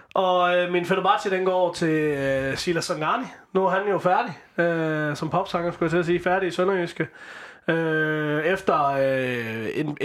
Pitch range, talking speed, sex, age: 140-175 Hz, 175 wpm, male, 20-39